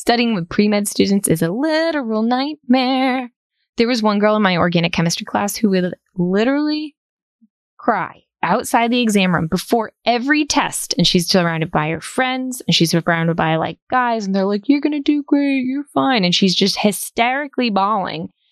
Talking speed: 180 wpm